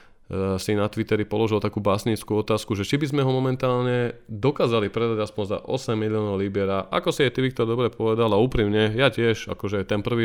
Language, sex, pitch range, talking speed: Slovak, male, 100-115 Hz, 200 wpm